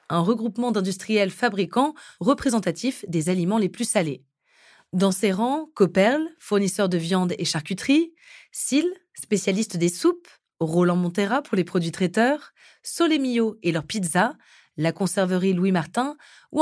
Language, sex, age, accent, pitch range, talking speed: French, female, 20-39, French, 180-245 Hz, 140 wpm